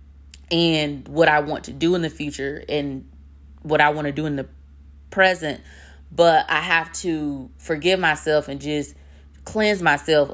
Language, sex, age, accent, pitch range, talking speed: English, female, 20-39, American, 140-175 Hz, 165 wpm